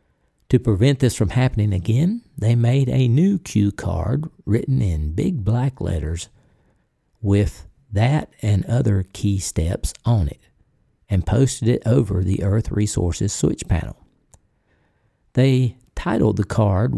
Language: English